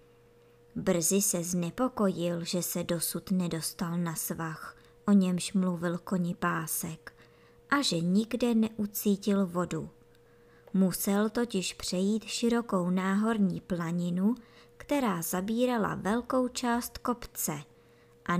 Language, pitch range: Czech, 170-215 Hz